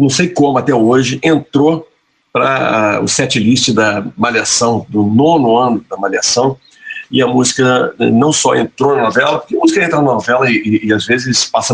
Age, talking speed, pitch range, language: 50-69, 195 wpm, 110-145 Hz, Portuguese